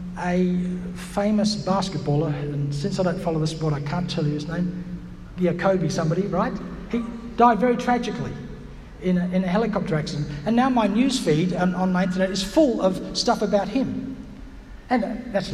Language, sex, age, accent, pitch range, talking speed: English, male, 60-79, Australian, 145-200 Hz, 175 wpm